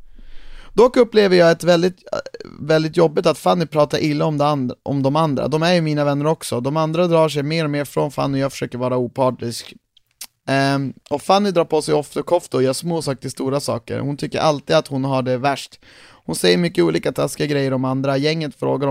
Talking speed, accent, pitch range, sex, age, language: 220 wpm, Swedish, 125-155 Hz, male, 30-49, English